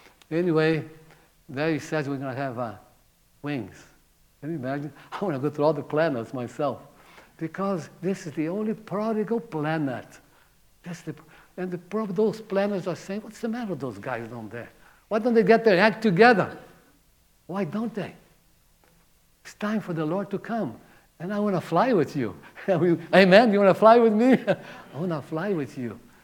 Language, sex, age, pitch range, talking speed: English, male, 60-79, 130-200 Hz, 185 wpm